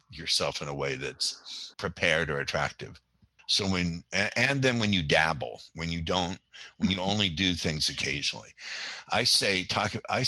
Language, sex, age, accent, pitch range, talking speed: English, male, 60-79, American, 80-105 Hz, 165 wpm